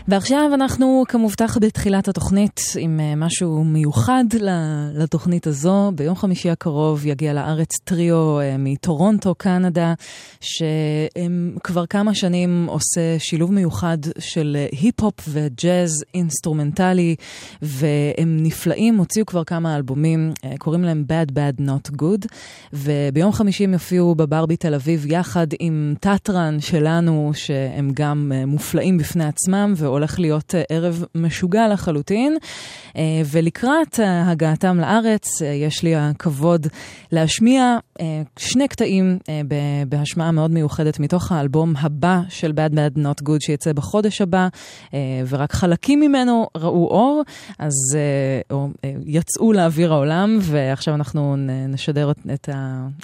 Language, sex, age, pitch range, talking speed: Hebrew, female, 20-39, 150-185 Hz, 110 wpm